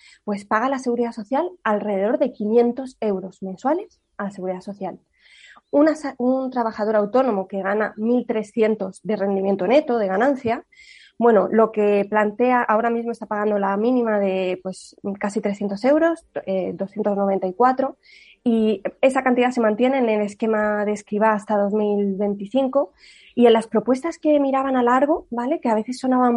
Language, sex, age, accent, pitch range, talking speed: Spanish, female, 20-39, Spanish, 210-260 Hz, 150 wpm